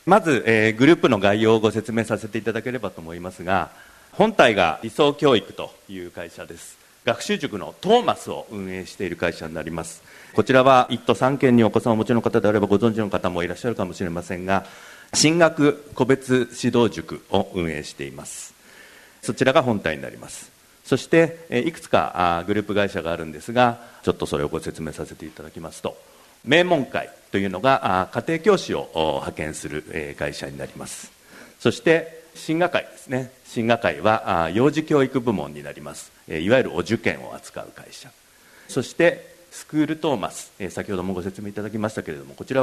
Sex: male